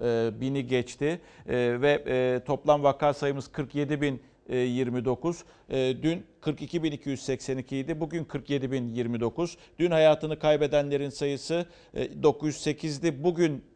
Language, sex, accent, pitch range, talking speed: Turkish, male, native, 135-165 Hz, 80 wpm